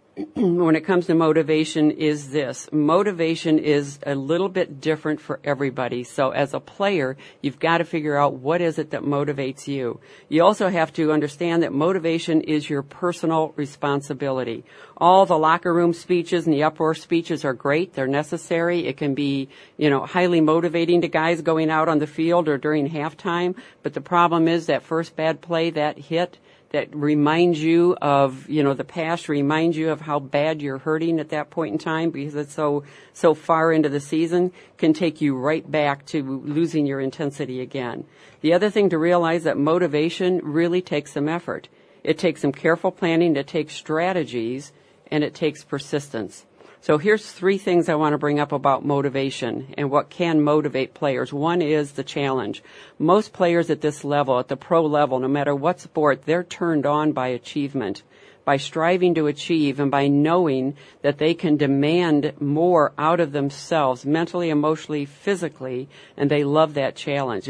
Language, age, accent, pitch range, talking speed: English, 50-69, American, 145-170 Hz, 180 wpm